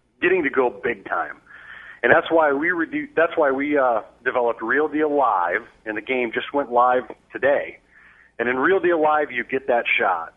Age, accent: 40-59, American